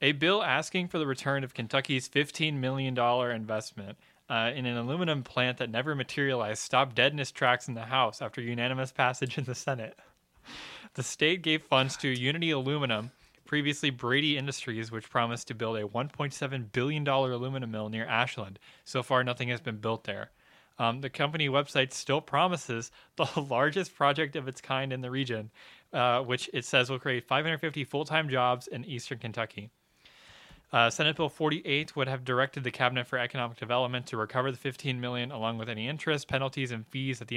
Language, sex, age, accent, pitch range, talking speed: English, male, 20-39, American, 115-140 Hz, 180 wpm